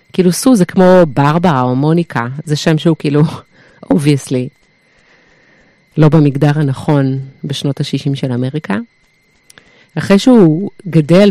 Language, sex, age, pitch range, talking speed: Hebrew, female, 30-49, 140-170 Hz, 115 wpm